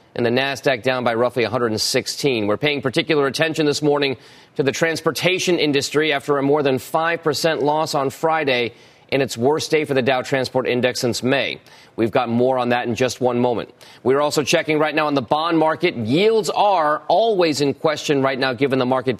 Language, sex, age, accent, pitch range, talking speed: English, male, 30-49, American, 125-160 Hz, 200 wpm